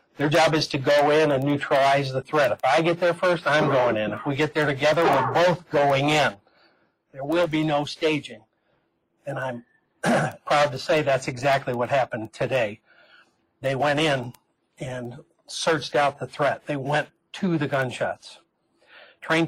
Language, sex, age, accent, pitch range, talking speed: English, male, 60-79, American, 135-160 Hz, 175 wpm